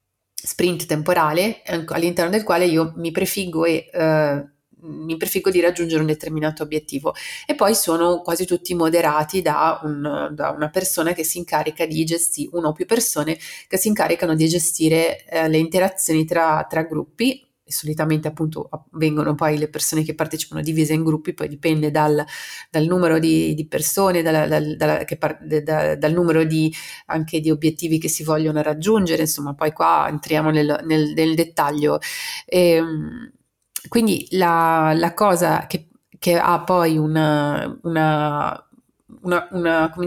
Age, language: 30-49, Italian